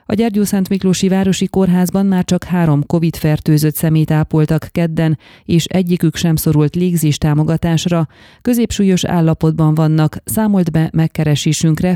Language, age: Hungarian, 30-49